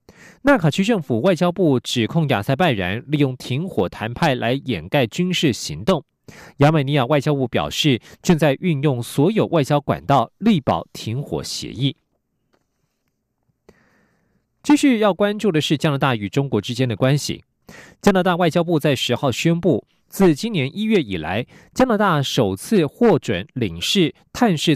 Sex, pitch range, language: male, 130-180 Hz, German